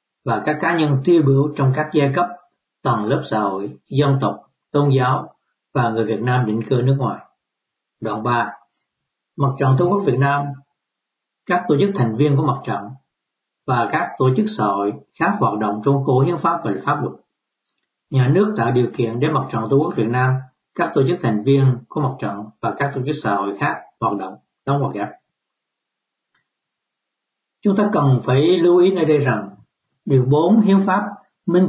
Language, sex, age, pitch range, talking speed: Vietnamese, male, 60-79, 120-160 Hz, 195 wpm